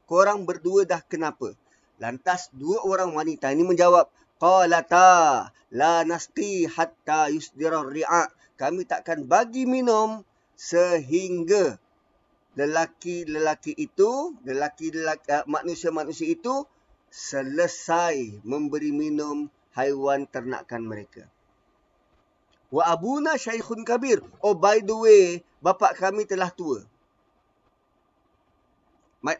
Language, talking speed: Malay, 90 wpm